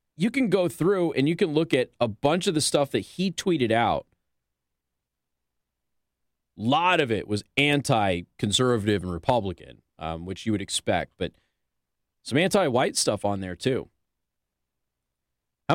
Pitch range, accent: 95-145 Hz, American